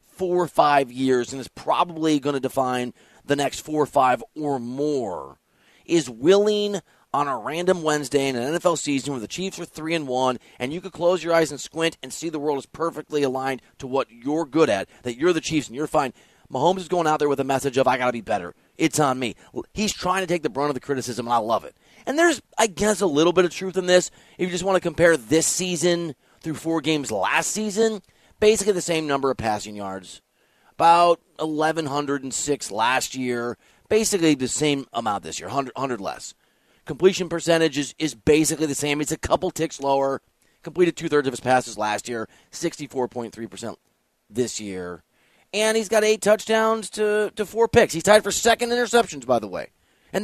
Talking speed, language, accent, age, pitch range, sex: 210 wpm, English, American, 30-49, 135-180 Hz, male